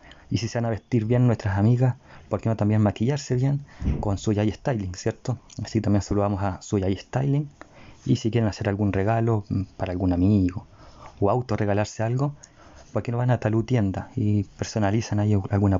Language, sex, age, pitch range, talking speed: Spanish, male, 30-49, 100-120 Hz, 195 wpm